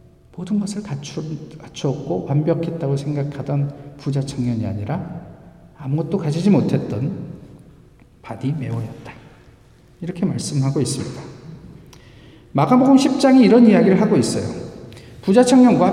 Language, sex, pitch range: Korean, male, 160-235 Hz